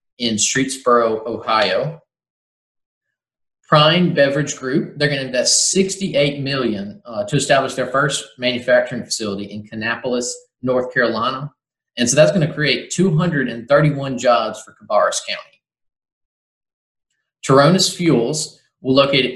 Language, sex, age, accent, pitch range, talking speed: English, male, 30-49, American, 120-150 Hz, 110 wpm